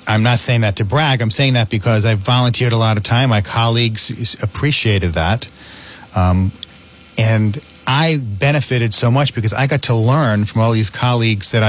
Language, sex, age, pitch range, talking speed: English, male, 40-59, 100-120 Hz, 185 wpm